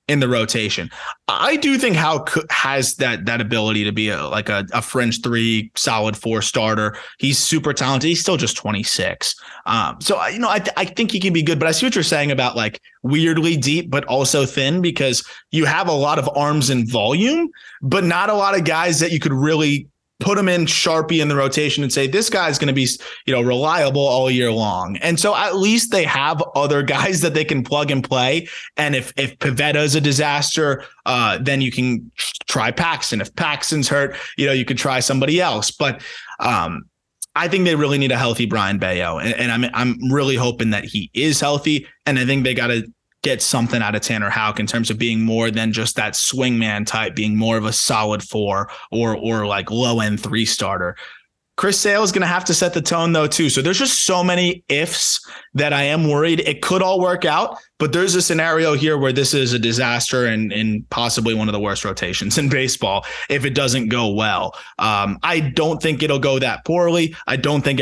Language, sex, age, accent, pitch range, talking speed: English, male, 20-39, American, 115-160 Hz, 220 wpm